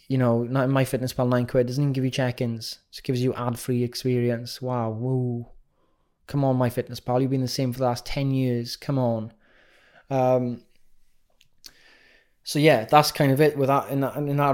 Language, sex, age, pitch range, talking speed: English, male, 20-39, 120-140 Hz, 200 wpm